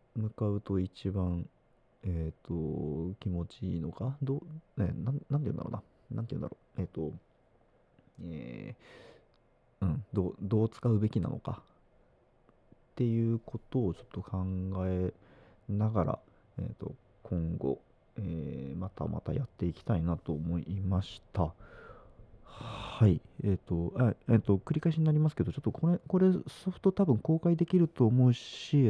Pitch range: 90-120 Hz